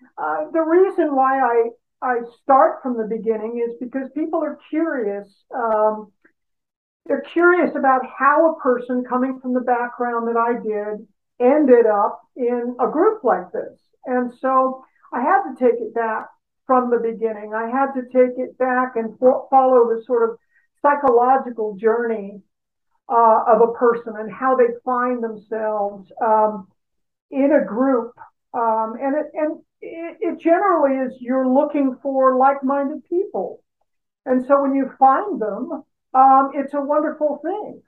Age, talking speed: 50-69, 150 wpm